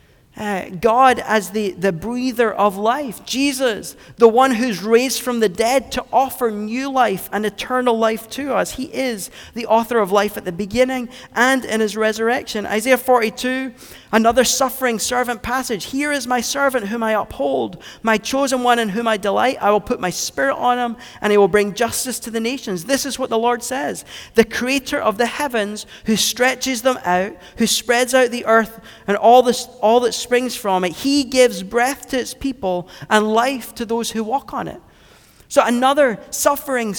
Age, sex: 40-59, male